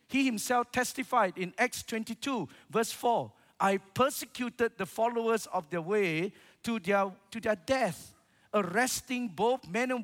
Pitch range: 180-240 Hz